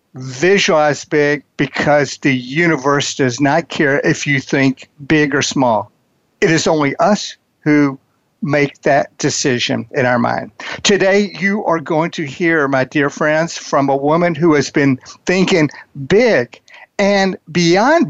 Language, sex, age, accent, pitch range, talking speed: English, male, 60-79, American, 145-190 Hz, 145 wpm